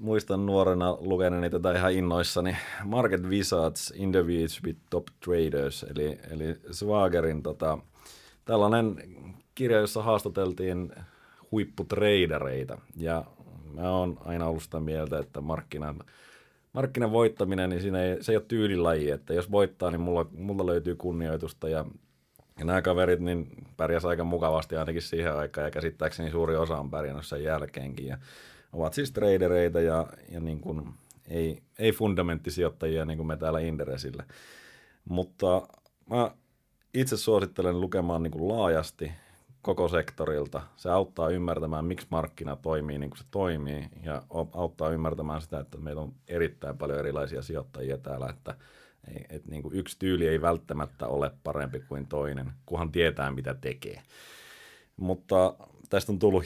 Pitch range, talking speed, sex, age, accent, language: 75-95 Hz, 140 wpm, male, 30-49, native, Finnish